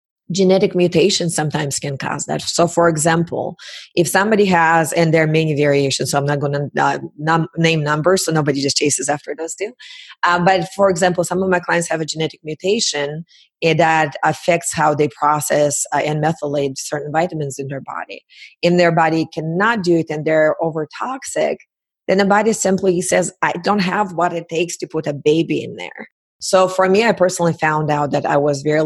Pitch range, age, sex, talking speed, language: 150-180 Hz, 30-49, female, 200 wpm, English